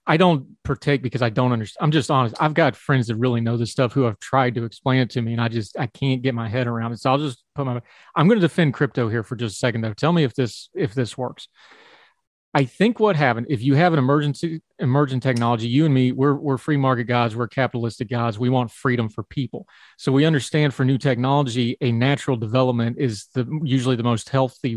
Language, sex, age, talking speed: English, male, 30-49, 245 wpm